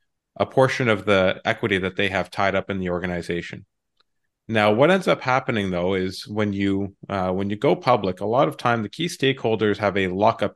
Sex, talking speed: male, 210 wpm